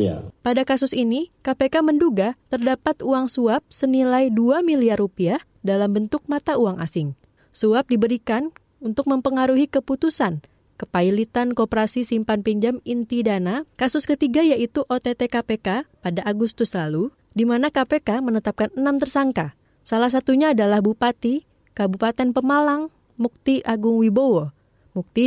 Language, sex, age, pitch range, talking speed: Indonesian, female, 20-39, 205-265 Hz, 125 wpm